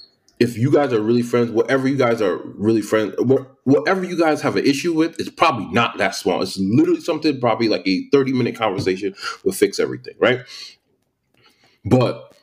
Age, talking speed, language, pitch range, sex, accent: 30-49, 180 wpm, English, 110-160 Hz, male, American